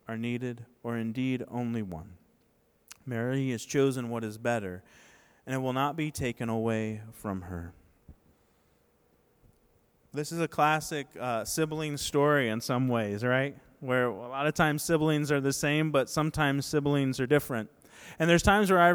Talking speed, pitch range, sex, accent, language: 160 wpm, 125-165 Hz, male, American, English